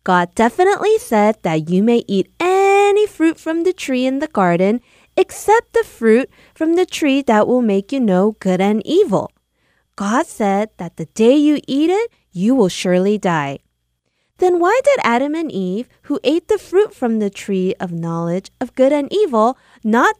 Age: 20-39